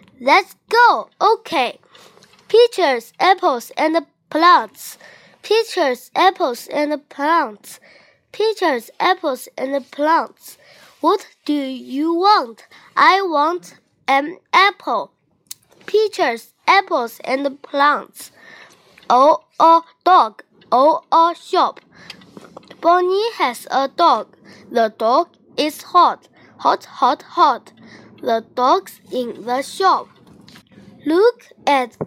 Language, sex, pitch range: Chinese, female, 255-380 Hz